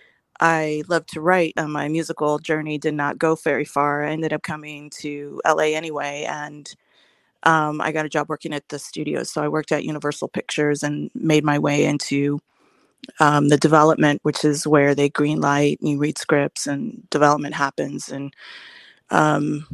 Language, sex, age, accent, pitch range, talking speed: English, female, 30-49, American, 145-160 Hz, 180 wpm